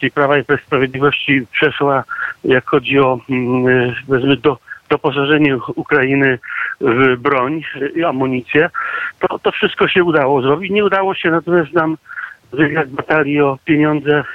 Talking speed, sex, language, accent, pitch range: 115 wpm, male, Polish, native, 135-165 Hz